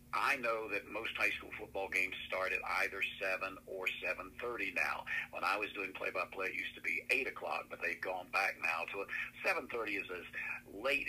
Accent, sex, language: American, male, English